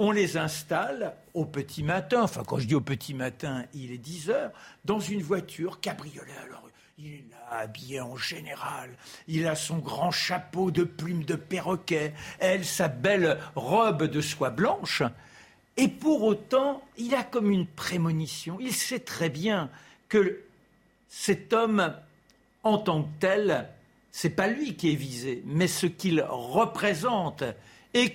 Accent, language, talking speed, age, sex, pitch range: French, French, 160 wpm, 60-79, male, 160-225 Hz